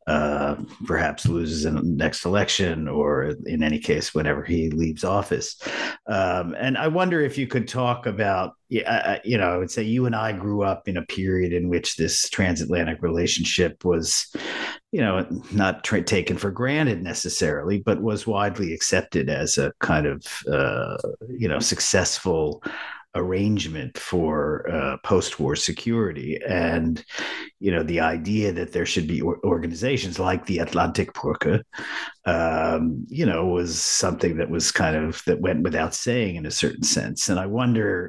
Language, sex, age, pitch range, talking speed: English, male, 50-69, 85-105 Hz, 160 wpm